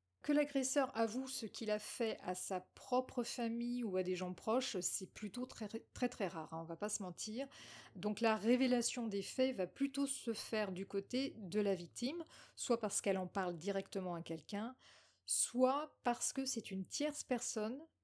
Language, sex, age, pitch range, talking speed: French, female, 40-59, 180-245 Hz, 195 wpm